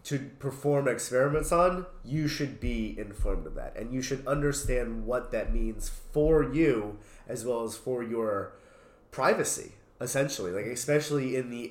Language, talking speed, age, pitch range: English, 155 wpm, 30-49, 115-140 Hz